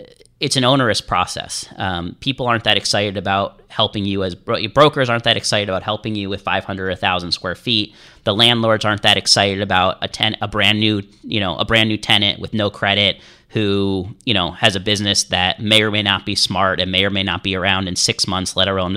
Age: 30-49